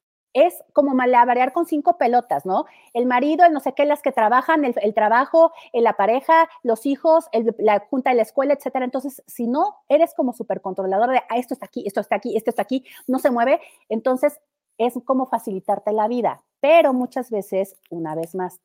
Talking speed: 205 wpm